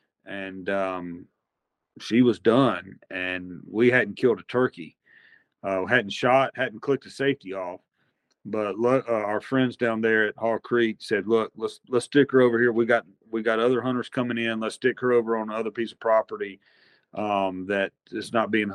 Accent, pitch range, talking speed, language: American, 105-130 Hz, 190 wpm, English